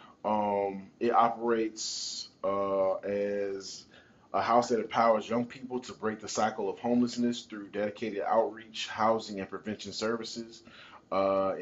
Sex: male